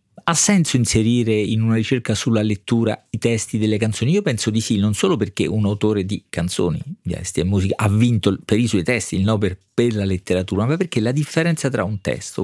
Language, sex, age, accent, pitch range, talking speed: Italian, male, 50-69, native, 100-120 Hz, 220 wpm